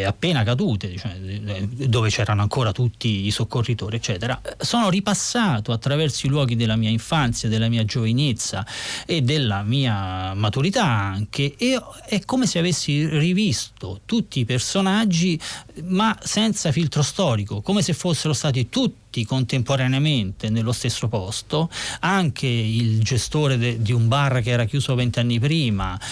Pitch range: 115-150 Hz